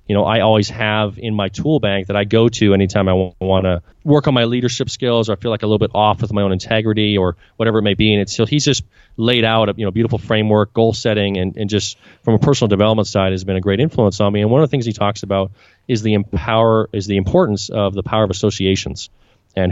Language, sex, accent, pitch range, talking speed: English, male, American, 100-120 Hz, 270 wpm